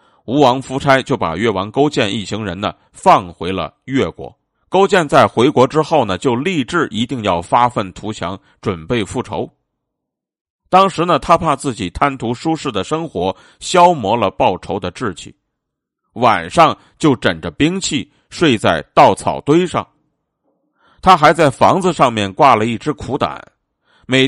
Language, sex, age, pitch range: Chinese, male, 50-69, 110-155 Hz